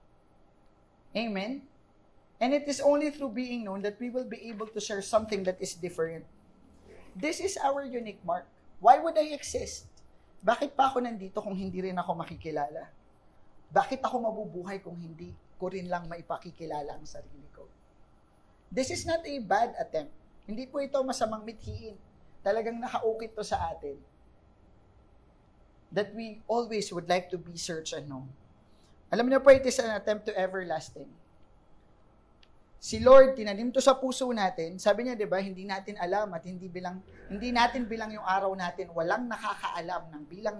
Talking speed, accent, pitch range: 165 wpm, Filipino, 145-240 Hz